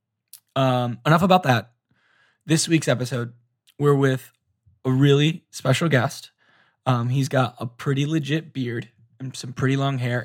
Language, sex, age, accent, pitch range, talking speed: English, male, 10-29, American, 125-140 Hz, 145 wpm